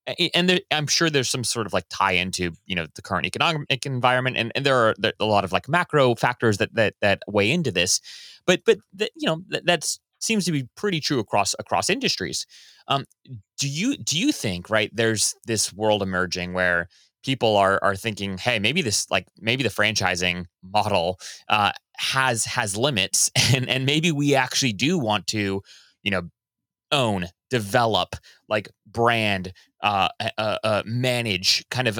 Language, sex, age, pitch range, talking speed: English, male, 20-39, 100-140 Hz, 180 wpm